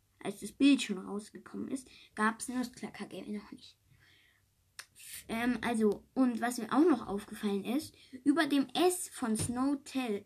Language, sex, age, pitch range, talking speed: English, female, 20-39, 200-285 Hz, 150 wpm